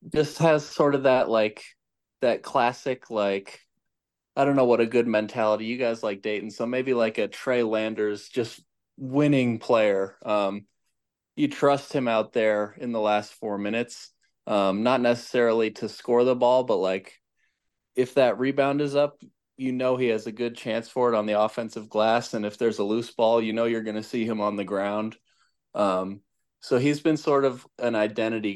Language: English